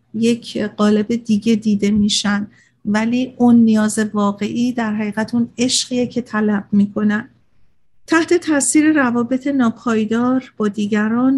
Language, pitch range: Persian, 210-240 Hz